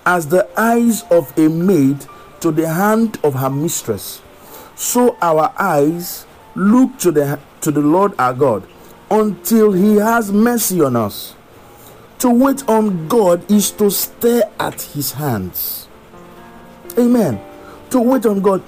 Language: English